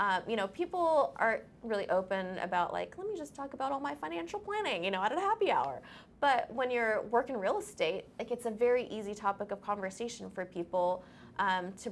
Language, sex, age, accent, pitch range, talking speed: English, female, 20-39, American, 180-230 Hz, 210 wpm